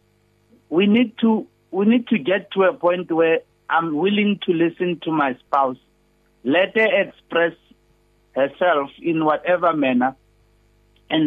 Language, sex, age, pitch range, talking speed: English, male, 60-79, 155-200 Hz, 140 wpm